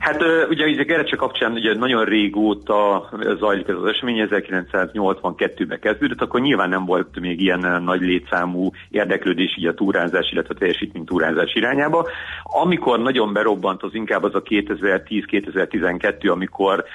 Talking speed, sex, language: 140 wpm, male, Hungarian